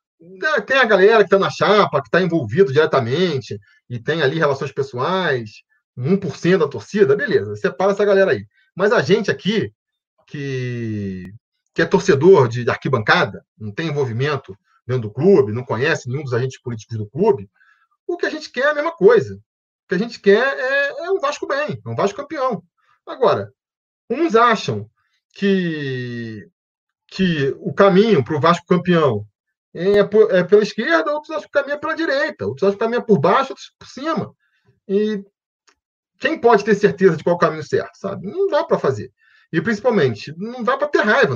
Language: Portuguese